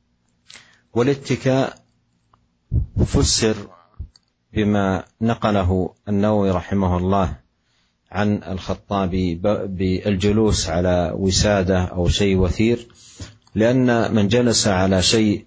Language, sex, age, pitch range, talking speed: Indonesian, male, 40-59, 90-110 Hz, 80 wpm